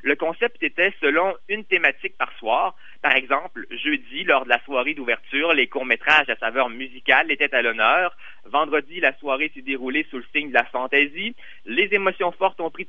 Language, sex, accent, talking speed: French, male, French, 185 wpm